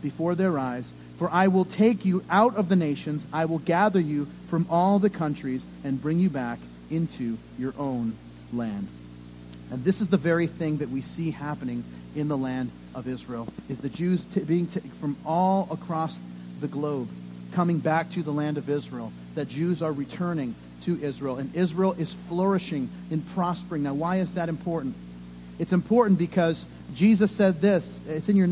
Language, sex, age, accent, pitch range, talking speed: English, male, 40-59, American, 140-195 Hz, 185 wpm